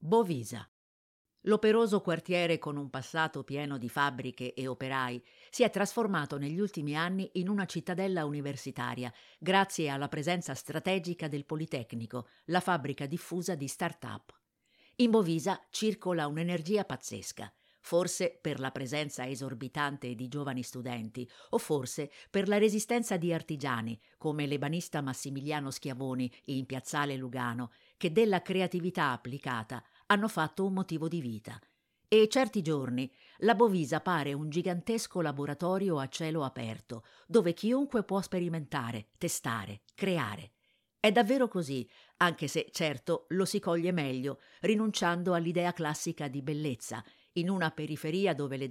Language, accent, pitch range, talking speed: Italian, native, 130-185 Hz, 130 wpm